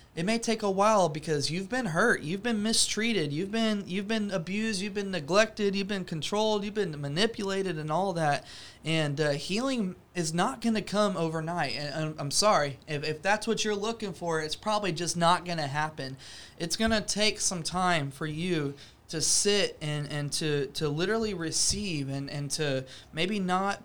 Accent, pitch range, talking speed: American, 150-190 Hz, 190 wpm